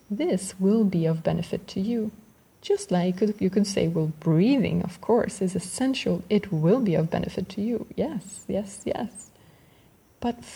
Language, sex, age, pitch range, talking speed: English, female, 20-39, 175-215 Hz, 165 wpm